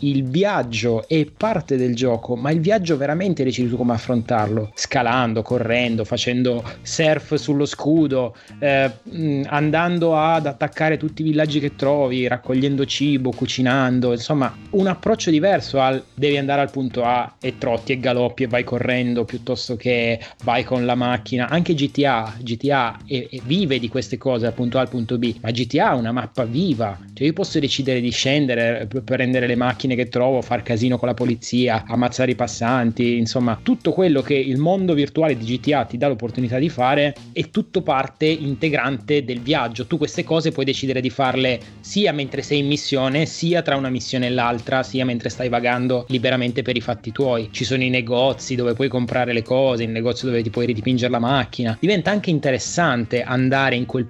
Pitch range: 120-145 Hz